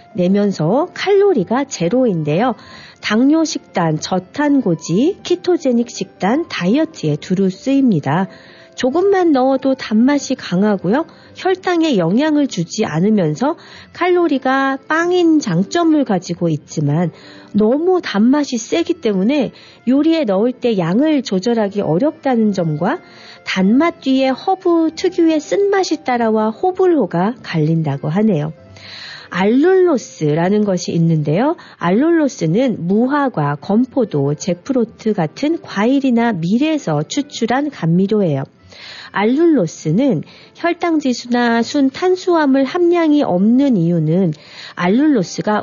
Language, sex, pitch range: Korean, female, 180-300 Hz